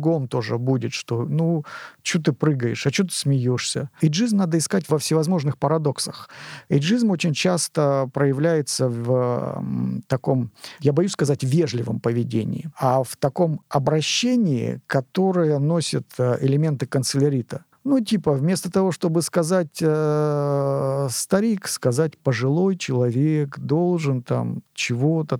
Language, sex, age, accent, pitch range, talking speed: Russian, male, 50-69, native, 130-165 Hz, 125 wpm